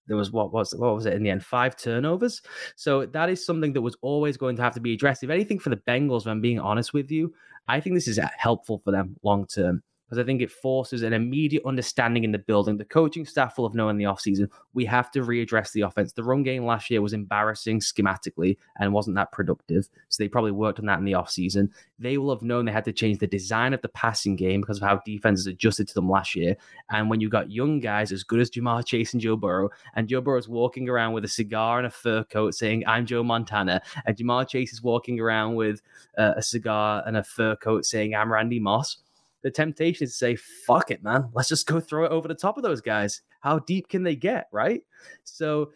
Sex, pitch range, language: male, 105-130 Hz, English